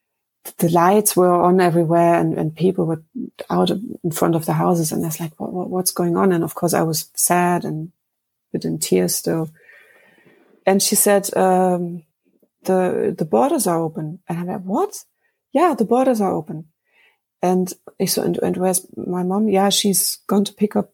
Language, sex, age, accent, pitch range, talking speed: English, female, 30-49, German, 170-200 Hz, 190 wpm